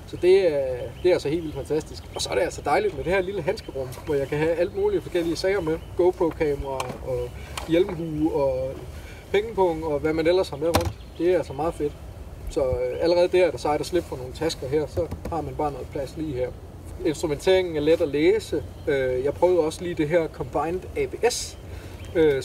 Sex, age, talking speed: male, 30-49, 220 wpm